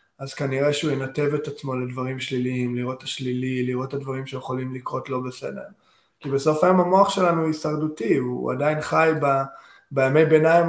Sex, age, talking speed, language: male, 20-39, 175 wpm, Hebrew